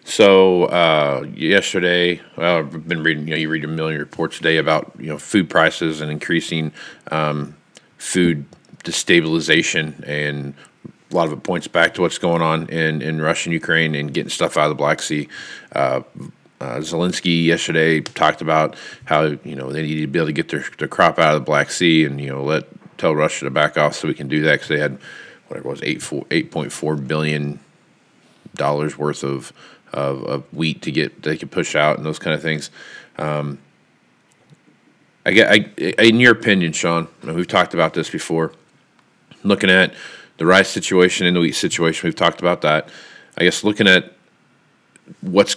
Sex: male